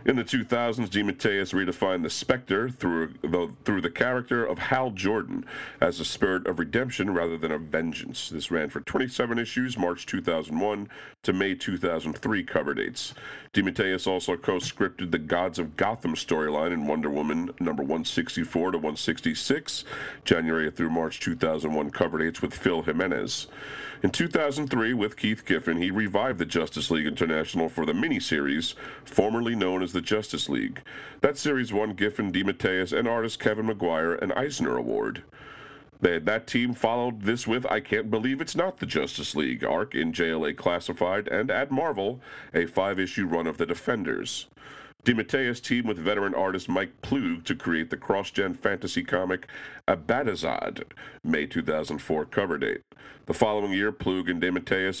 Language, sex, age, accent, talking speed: English, male, 40-59, American, 155 wpm